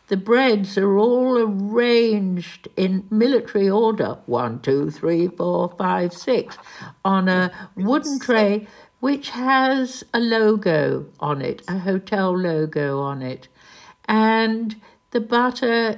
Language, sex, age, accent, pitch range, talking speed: English, female, 60-79, British, 175-225 Hz, 120 wpm